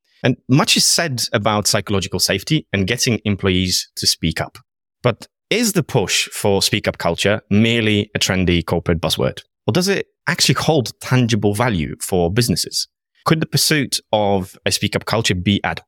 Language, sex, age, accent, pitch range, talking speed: English, male, 30-49, British, 95-135 Hz, 165 wpm